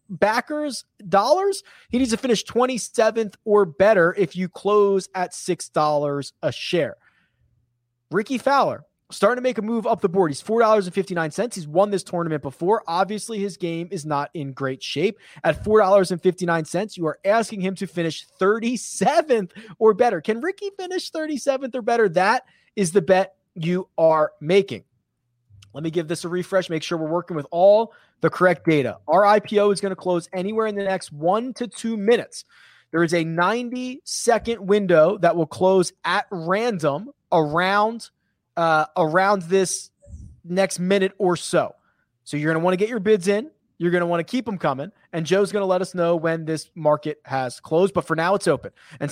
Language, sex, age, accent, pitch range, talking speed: English, male, 30-49, American, 165-215 Hz, 190 wpm